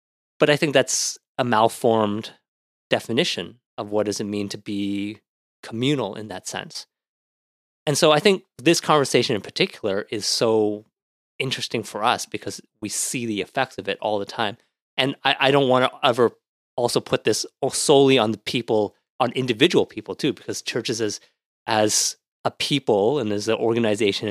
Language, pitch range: English, 105-130 Hz